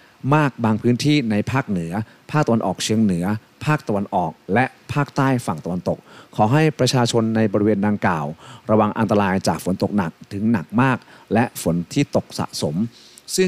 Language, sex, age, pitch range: Thai, male, 30-49, 100-135 Hz